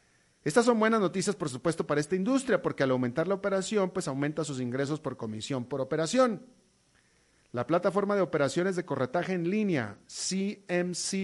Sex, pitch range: male, 150-205 Hz